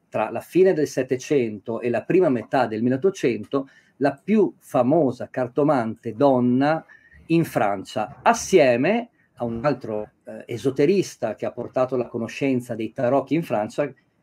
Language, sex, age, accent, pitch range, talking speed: Italian, male, 50-69, native, 125-180 Hz, 135 wpm